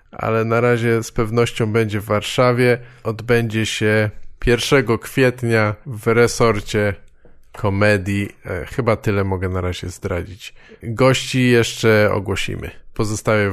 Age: 20-39